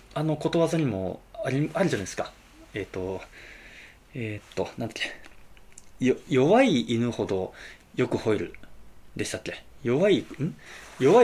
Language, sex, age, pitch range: Japanese, male, 20-39, 105-165 Hz